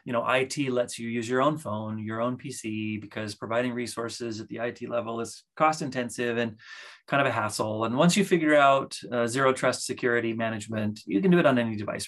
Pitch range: 125-170 Hz